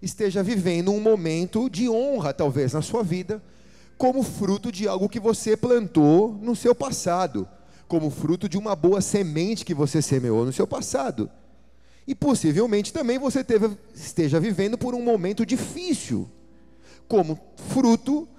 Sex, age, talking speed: male, 40-59, 145 wpm